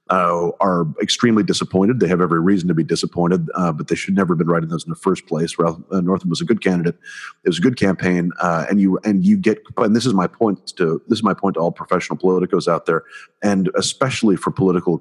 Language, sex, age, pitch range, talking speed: English, male, 40-59, 85-100 Hz, 250 wpm